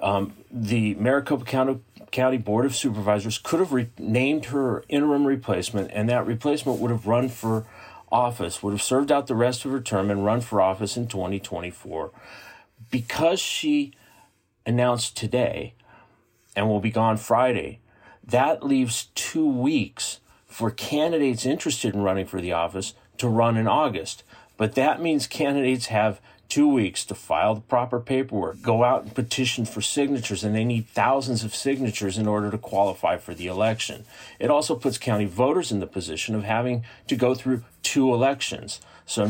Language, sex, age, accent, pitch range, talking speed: English, male, 40-59, American, 105-130 Hz, 165 wpm